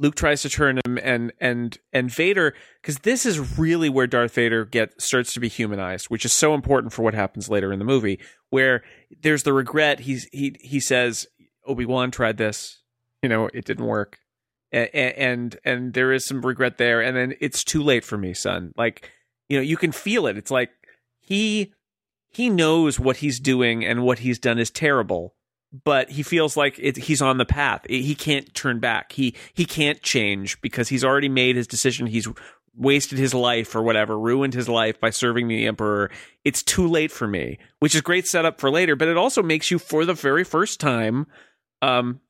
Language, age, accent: English, 30-49, American